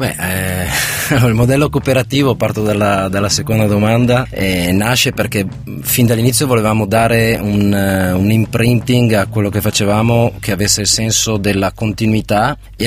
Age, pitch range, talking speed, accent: 30-49, 95-115 Hz, 150 wpm, native